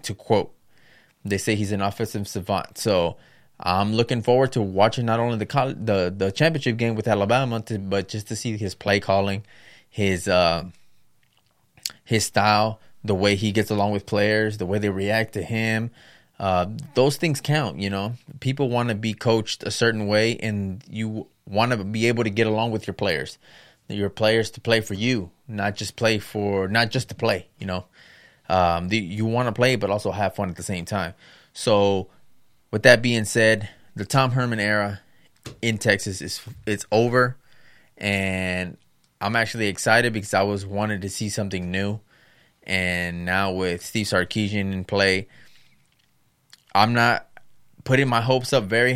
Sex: male